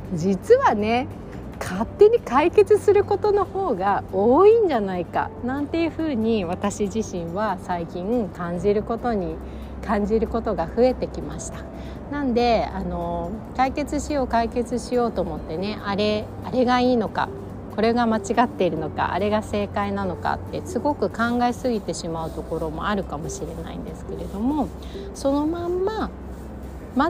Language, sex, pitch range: Japanese, female, 190-310 Hz